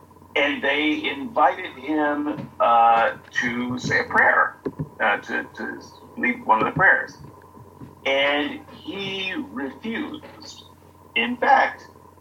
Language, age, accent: English, 50-69, American